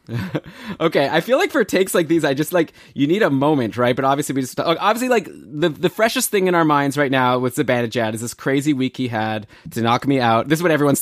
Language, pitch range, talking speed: English, 120-155 Hz, 255 wpm